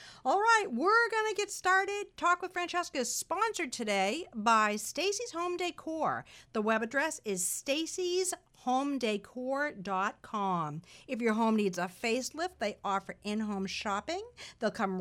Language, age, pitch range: English, 50-69, 205-330 Hz